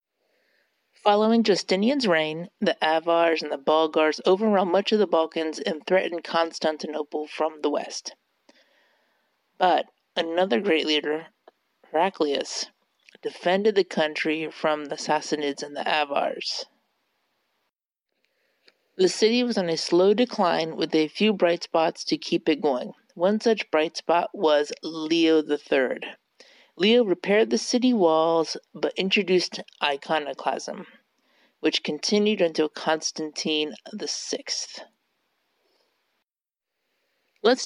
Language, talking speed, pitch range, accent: English, 110 wpm, 155-210 Hz, American